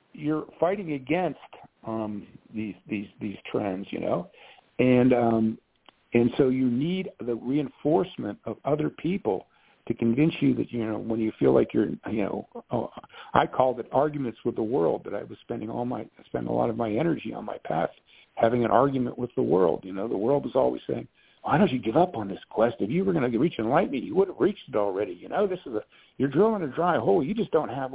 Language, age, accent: English, 50-69, American